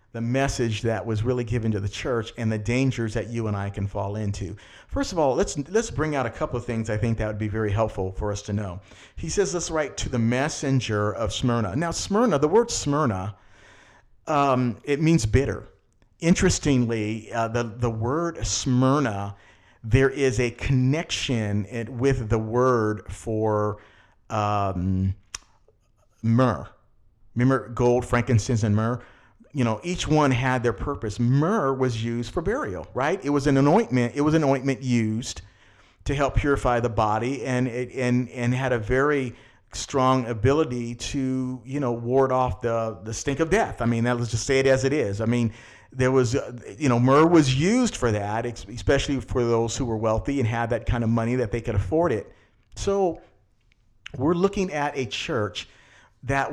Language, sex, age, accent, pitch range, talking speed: English, male, 50-69, American, 110-135 Hz, 180 wpm